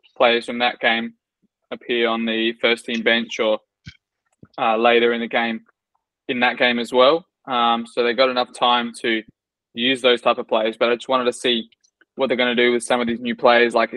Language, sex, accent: English, male, Australian